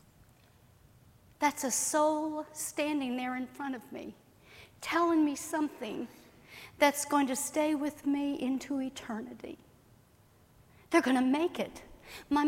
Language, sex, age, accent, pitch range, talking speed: English, female, 60-79, American, 200-285 Hz, 120 wpm